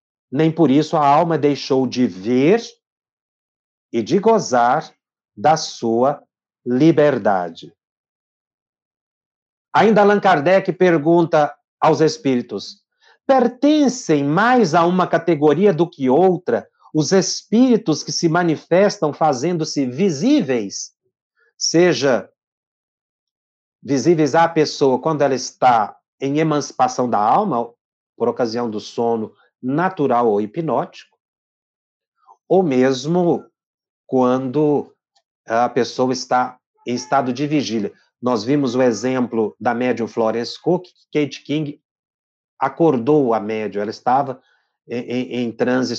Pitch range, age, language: 125-165 Hz, 50-69, Portuguese